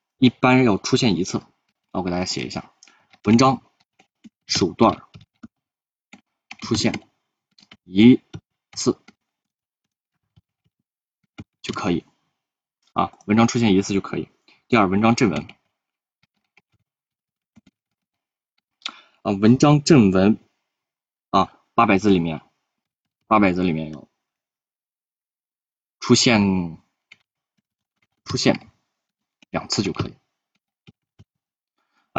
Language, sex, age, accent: Chinese, male, 20-39, native